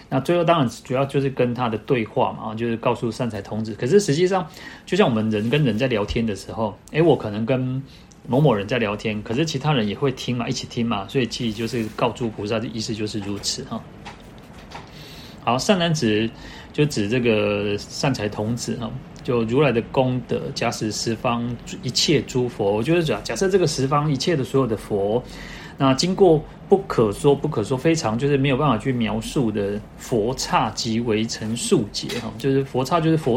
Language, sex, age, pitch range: Chinese, male, 30-49, 110-140 Hz